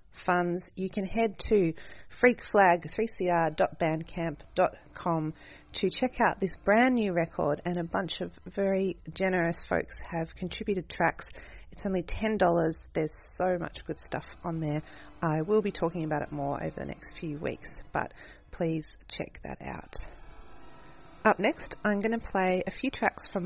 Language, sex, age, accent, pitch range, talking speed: English, female, 30-49, Australian, 160-200 Hz, 155 wpm